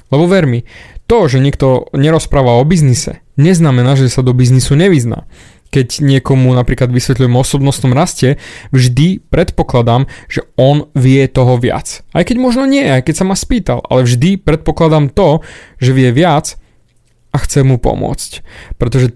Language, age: Slovak, 20-39